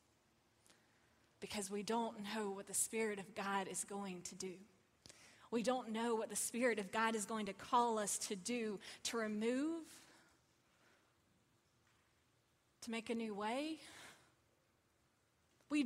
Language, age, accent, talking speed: English, 20-39, American, 135 wpm